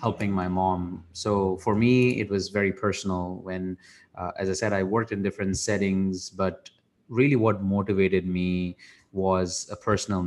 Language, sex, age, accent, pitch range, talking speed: English, male, 20-39, Indian, 90-105 Hz, 165 wpm